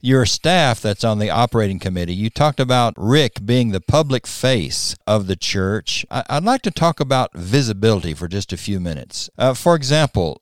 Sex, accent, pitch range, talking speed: male, American, 95-125 Hz, 185 wpm